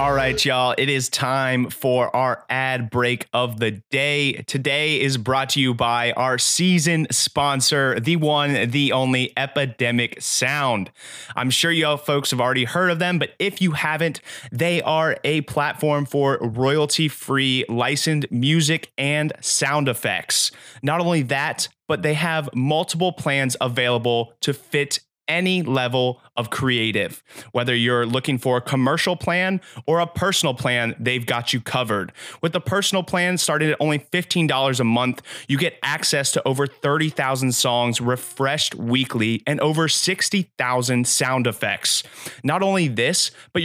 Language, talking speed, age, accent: English, 155 wpm, 30-49, American